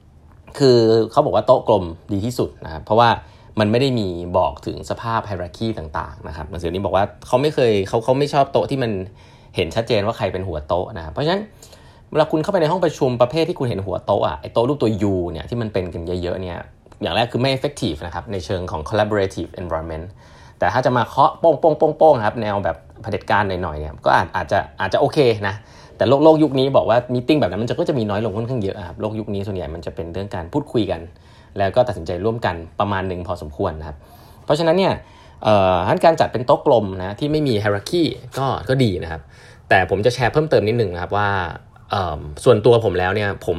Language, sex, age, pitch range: Thai, male, 20-39, 95-125 Hz